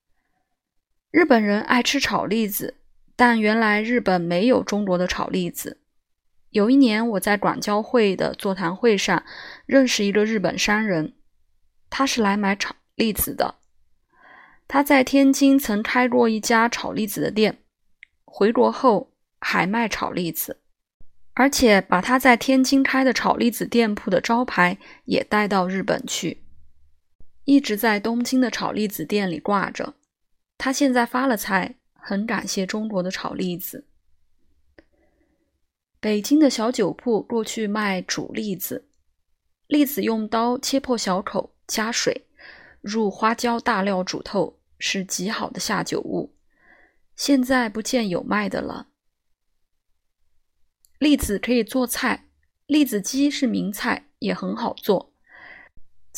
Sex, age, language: female, 20-39, Chinese